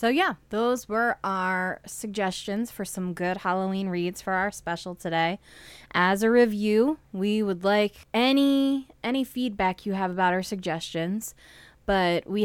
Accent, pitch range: American, 170-210 Hz